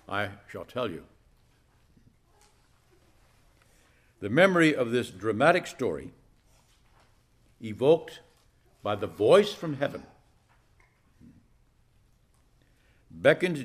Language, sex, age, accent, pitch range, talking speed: English, male, 60-79, American, 105-150 Hz, 75 wpm